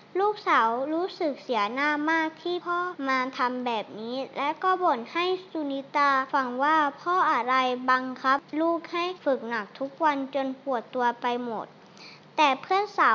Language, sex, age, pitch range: Thai, male, 20-39, 255-315 Hz